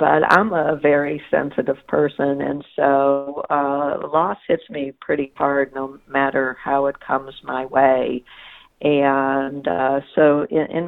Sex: female